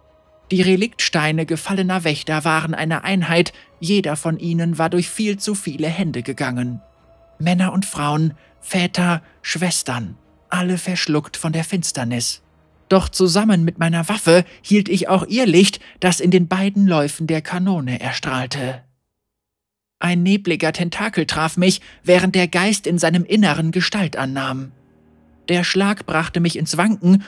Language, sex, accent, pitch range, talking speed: German, male, German, 145-185 Hz, 140 wpm